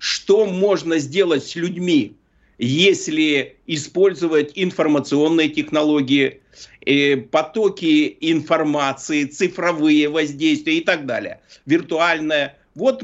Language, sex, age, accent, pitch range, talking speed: Russian, male, 50-69, native, 155-225 Hz, 85 wpm